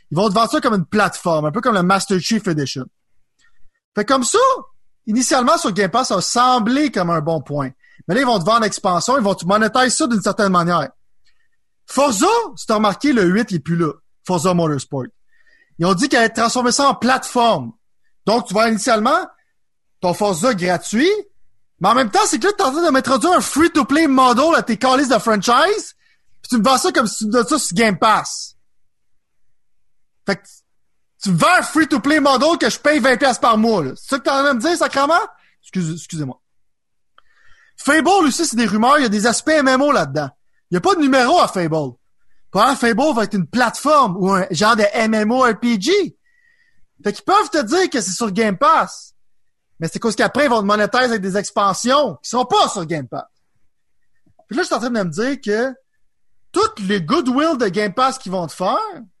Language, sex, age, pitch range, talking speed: French, male, 30-49, 195-295 Hz, 215 wpm